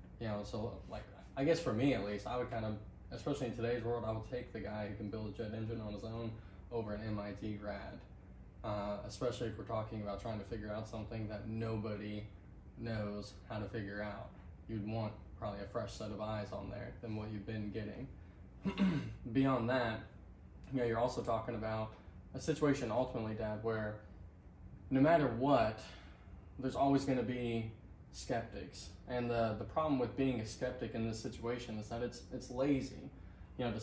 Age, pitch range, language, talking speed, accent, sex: 20-39, 105-125 Hz, English, 195 wpm, American, male